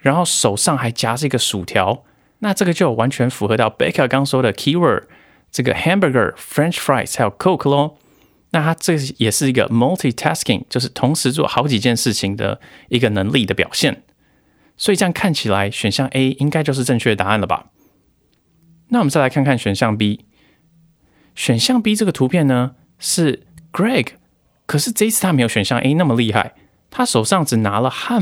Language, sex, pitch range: Chinese, male, 110-165 Hz